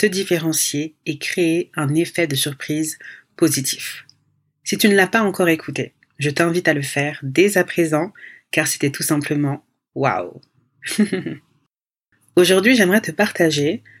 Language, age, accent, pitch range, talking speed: French, 40-59, French, 145-185 Hz, 150 wpm